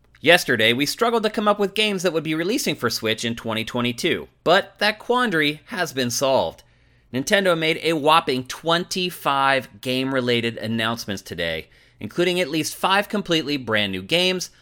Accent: American